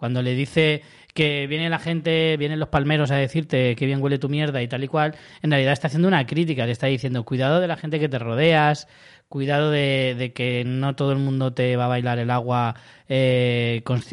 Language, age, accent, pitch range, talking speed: Spanish, 20-39, Spanish, 125-160 Hz, 225 wpm